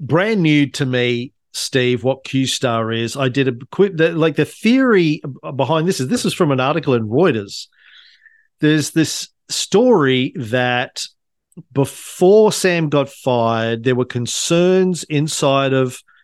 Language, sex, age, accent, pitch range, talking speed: English, male, 40-59, Australian, 125-160 Hz, 140 wpm